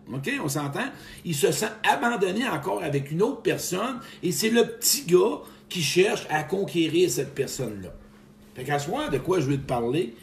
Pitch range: 110-170 Hz